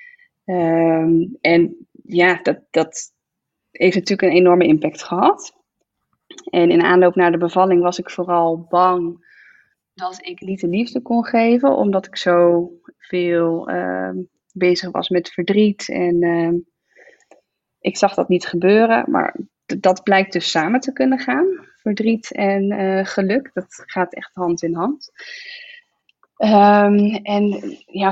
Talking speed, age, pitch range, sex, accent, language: 135 wpm, 20-39, 175-210 Hz, female, Dutch, Dutch